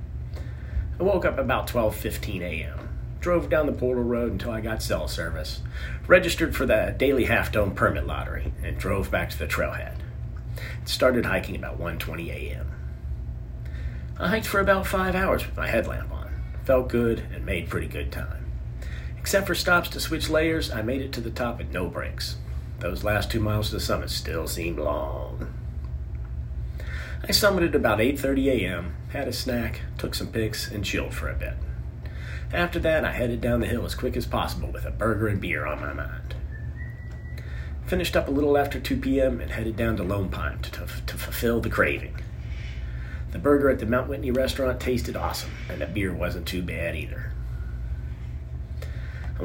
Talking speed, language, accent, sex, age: 180 wpm, English, American, male, 40-59